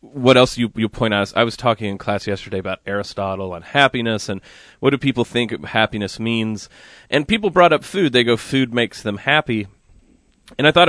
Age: 30-49